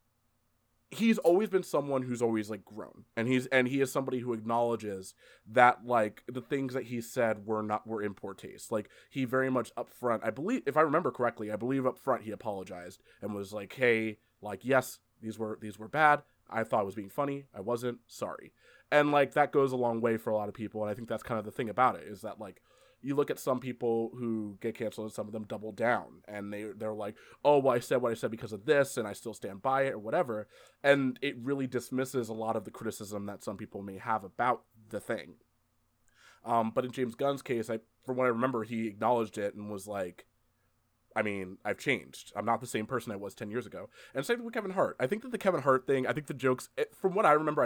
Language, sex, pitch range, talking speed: English, male, 110-130 Hz, 250 wpm